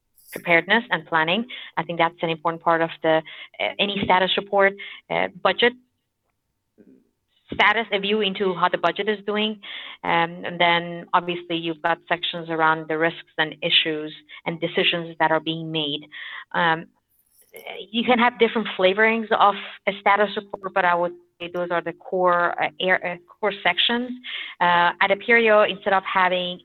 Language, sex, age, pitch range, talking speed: English, female, 30-49, 165-195 Hz, 165 wpm